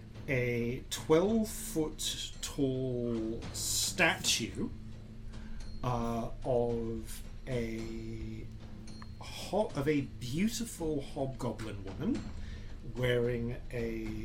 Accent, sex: British, male